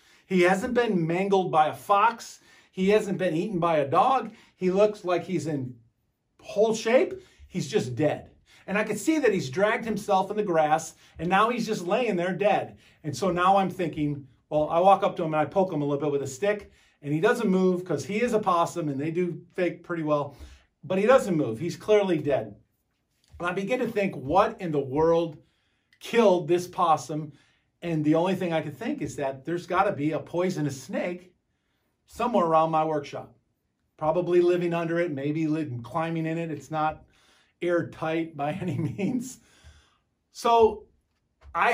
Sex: male